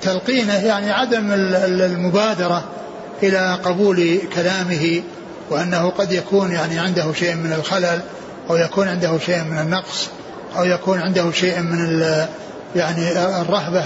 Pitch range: 175-200 Hz